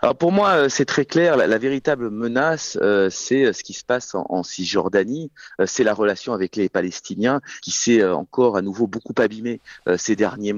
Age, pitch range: 40-59, 100-130 Hz